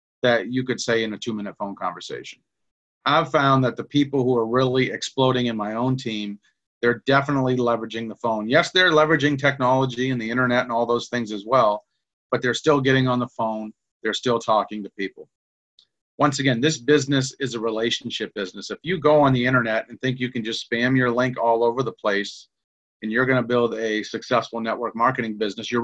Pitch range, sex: 115-135 Hz, male